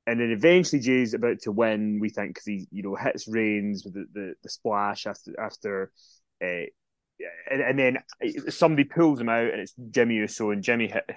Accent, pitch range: British, 105-130 Hz